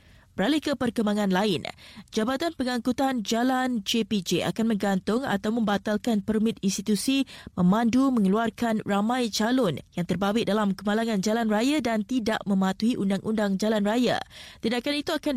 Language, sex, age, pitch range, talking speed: Malay, female, 20-39, 200-230 Hz, 130 wpm